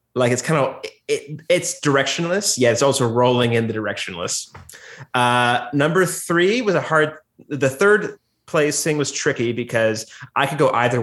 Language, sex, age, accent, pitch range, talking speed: English, male, 30-49, American, 120-150 Hz, 170 wpm